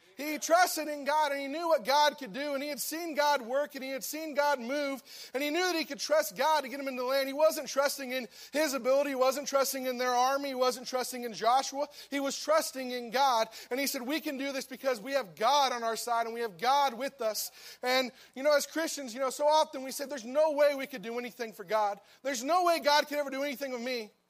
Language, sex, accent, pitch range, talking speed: English, male, American, 250-295 Hz, 270 wpm